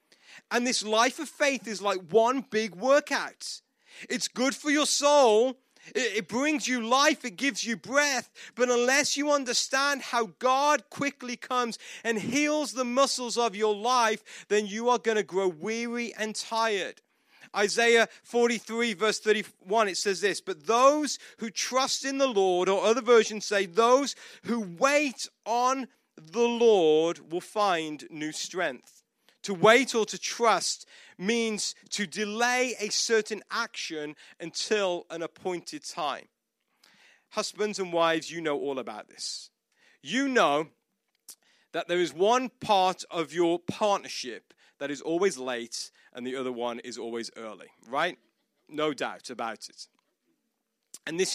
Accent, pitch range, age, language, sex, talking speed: British, 180-250 Hz, 30-49, English, male, 145 wpm